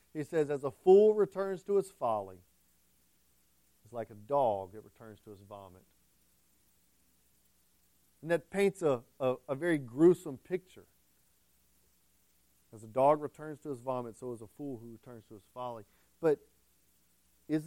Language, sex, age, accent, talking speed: English, male, 40-59, American, 155 wpm